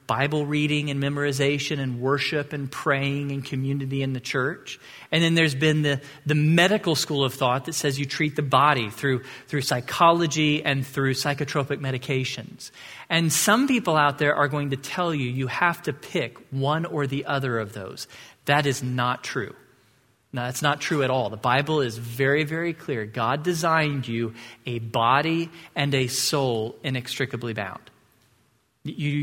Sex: male